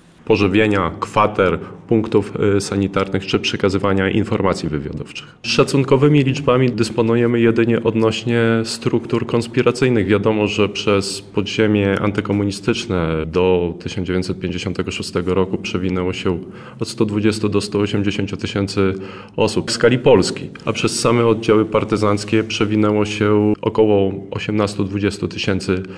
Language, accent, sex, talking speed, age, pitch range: Polish, native, male, 100 wpm, 20-39, 95-110 Hz